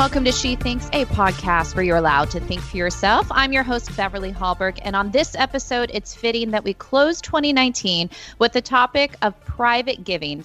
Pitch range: 180-235 Hz